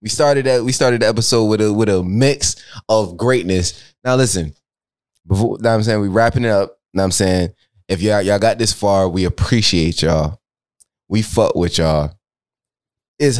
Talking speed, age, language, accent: 180 wpm, 20-39, English, American